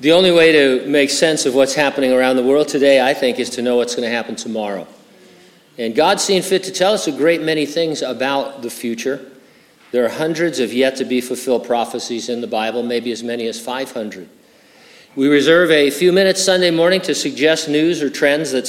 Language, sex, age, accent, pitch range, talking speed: English, male, 50-69, American, 125-155 Hz, 205 wpm